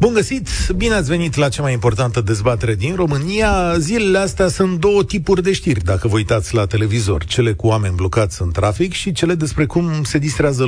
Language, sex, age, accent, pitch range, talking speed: Romanian, male, 40-59, native, 110-160 Hz, 200 wpm